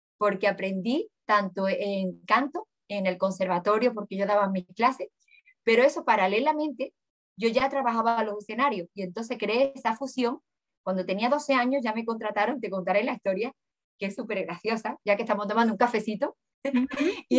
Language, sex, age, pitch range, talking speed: Spanish, female, 20-39, 200-275 Hz, 170 wpm